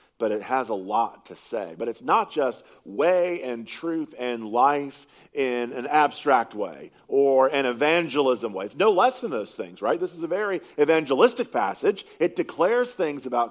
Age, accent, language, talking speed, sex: 40-59, American, English, 180 wpm, male